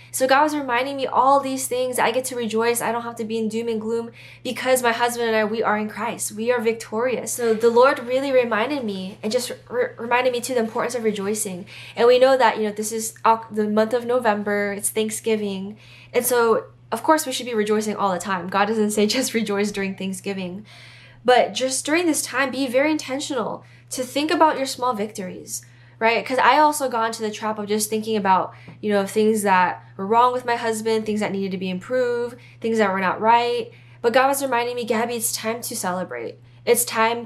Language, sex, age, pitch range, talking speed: English, female, 10-29, 205-250 Hz, 220 wpm